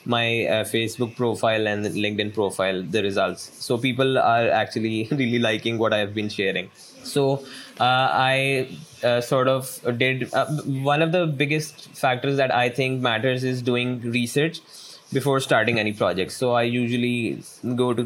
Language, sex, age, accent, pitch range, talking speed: English, male, 20-39, Indian, 110-130 Hz, 165 wpm